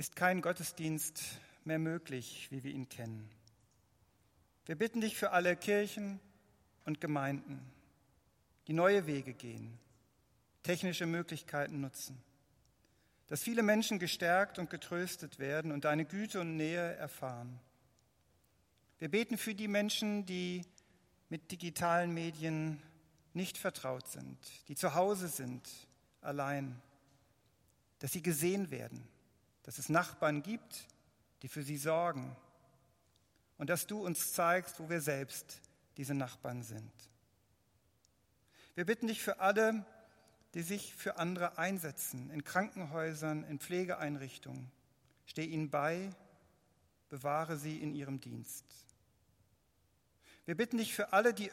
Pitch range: 130-175 Hz